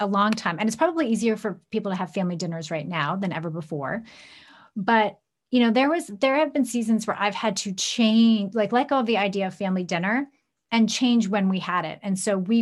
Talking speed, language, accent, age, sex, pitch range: 235 wpm, English, American, 30-49, female, 185-225 Hz